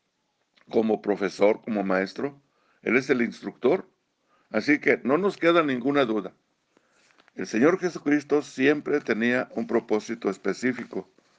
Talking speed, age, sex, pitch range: 120 wpm, 60-79, male, 110-150 Hz